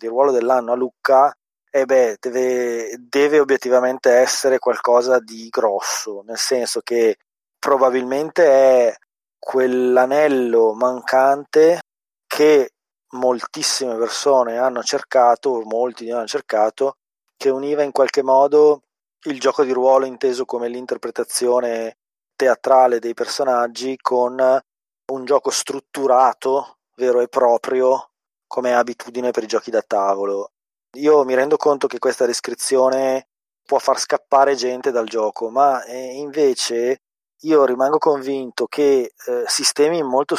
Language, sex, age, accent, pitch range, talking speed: Italian, male, 20-39, native, 120-140 Hz, 125 wpm